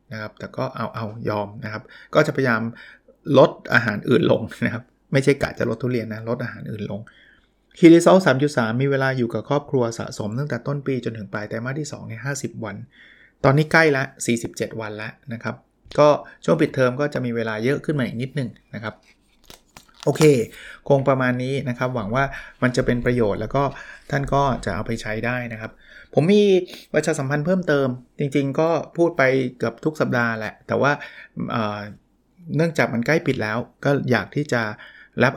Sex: male